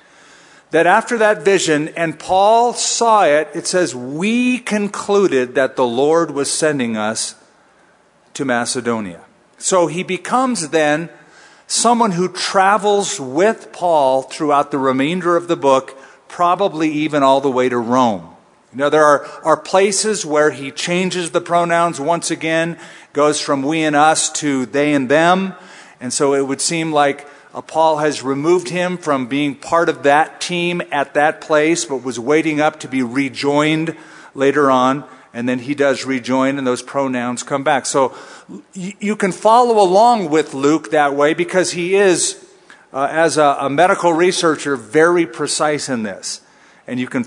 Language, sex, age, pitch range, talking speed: English, male, 50-69, 140-180 Hz, 160 wpm